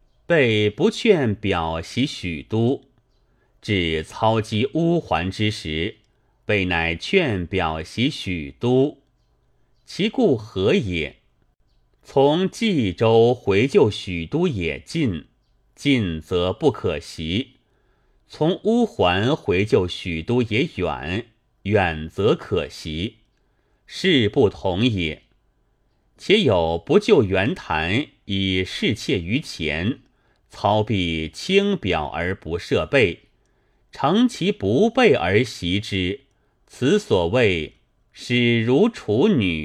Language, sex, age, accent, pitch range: Chinese, male, 30-49, native, 90-135 Hz